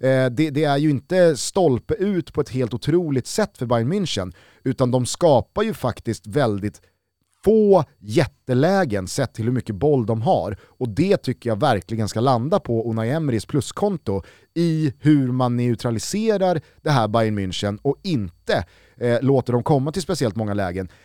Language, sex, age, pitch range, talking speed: Swedish, male, 30-49, 110-150 Hz, 165 wpm